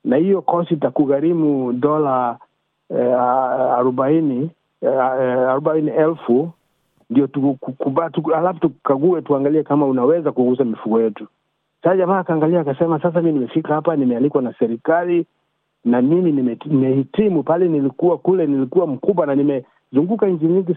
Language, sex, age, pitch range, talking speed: Swahili, male, 50-69, 130-165 Hz, 125 wpm